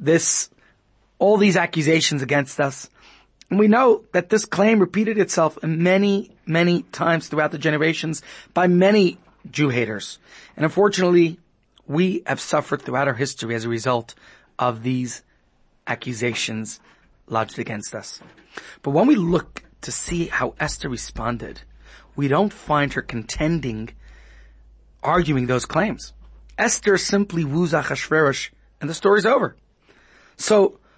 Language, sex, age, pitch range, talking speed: English, male, 30-49, 125-180 Hz, 130 wpm